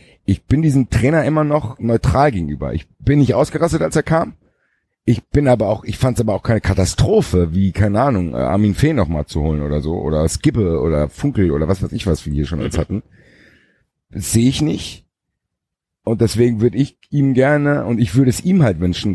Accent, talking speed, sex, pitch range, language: German, 215 wpm, male, 85-115 Hz, German